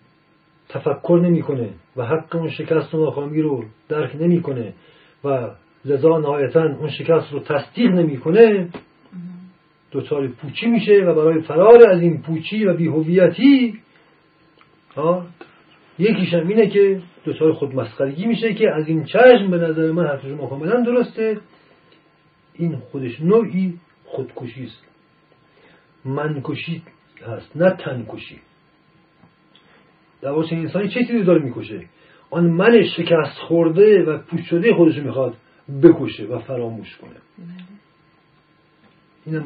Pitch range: 140-175 Hz